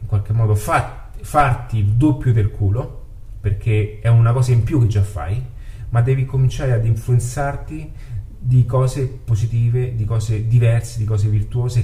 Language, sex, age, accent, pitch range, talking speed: Italian, male, 30-49, native, 105-130 Hz, 150 wpm